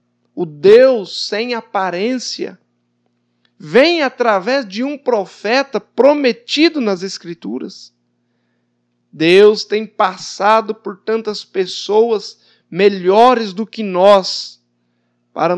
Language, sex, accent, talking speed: Portuguese, male, Brazilian, 90 wpm